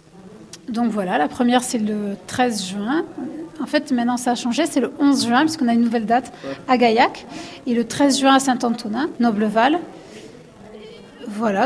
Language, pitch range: French, 220-265 Hz